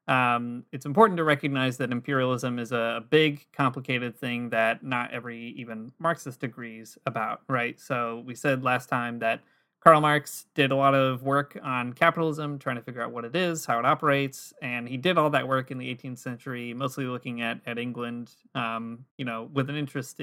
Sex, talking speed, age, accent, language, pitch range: male, 195 wpm, 30-49, American, English, 120-140 Hz